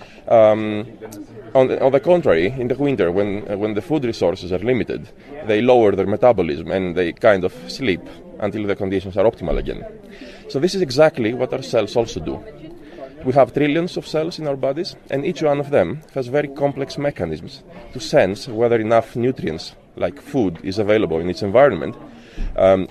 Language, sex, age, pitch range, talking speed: English, male, 30-49, 105-140 Hz, 185 wpm